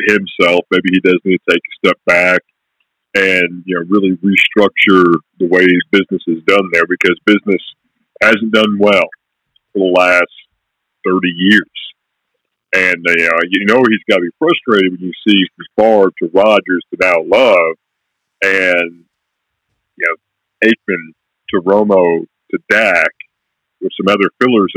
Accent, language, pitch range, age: American, English, 90-105 Hz, 40-59